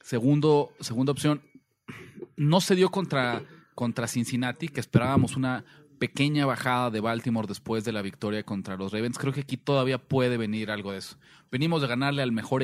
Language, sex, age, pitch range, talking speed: Spanish, male, 30-49, 110-140 Hz, 175 wpm